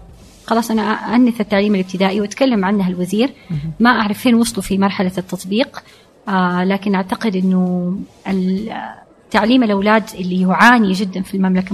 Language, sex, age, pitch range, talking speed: Arabic, female, 30-49, 185-220 Hz, 130 wpm